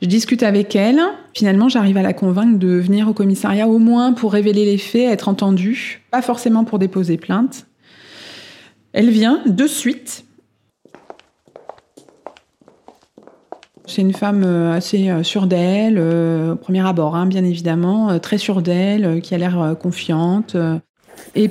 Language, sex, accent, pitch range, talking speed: French, female, French, 185-225 Hz, 140 wpm